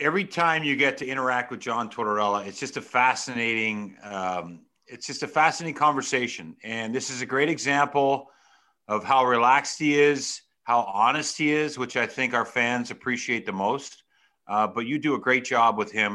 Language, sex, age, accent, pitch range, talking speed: English, male, 50-69, American, 105-140 Hz, 190 wpm